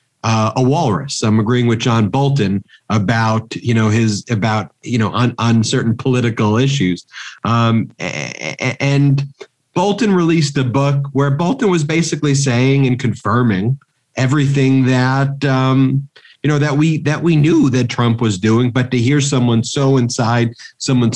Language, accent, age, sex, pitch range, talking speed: English, American, 40-59, male, 115-135 Hz, 155 wpm